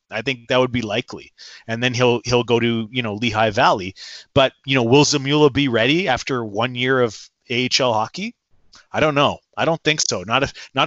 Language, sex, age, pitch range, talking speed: English, male, 30-49, 115-140 Hz, 215 wpm